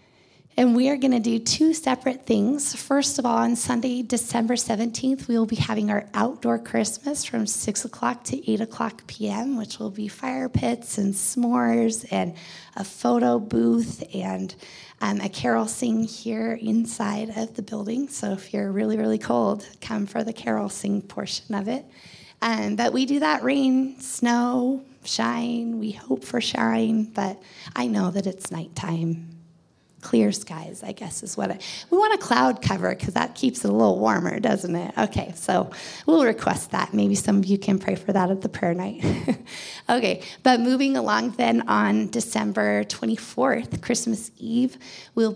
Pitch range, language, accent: 195-235 Hz, English, American